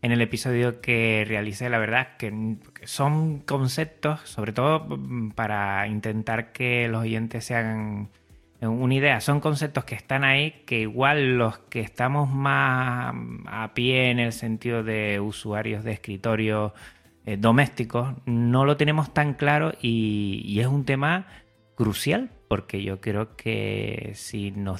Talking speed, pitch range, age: 145 wpm, 105-125 Hz, 20-39